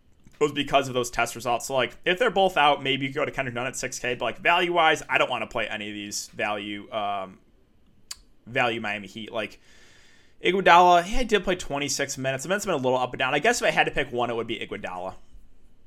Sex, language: male, English